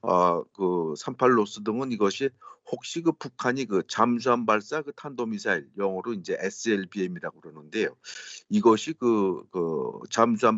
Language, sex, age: Korean, male, 50-69